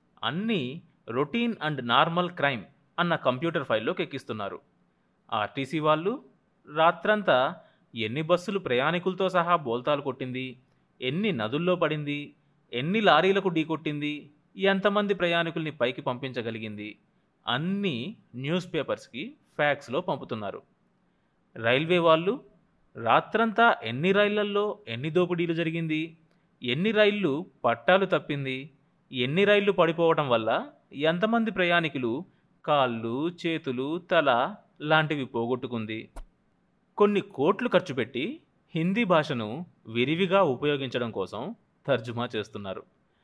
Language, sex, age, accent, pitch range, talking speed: Telugu, male, 30-49, native, 130-195 Hz, 95 wpm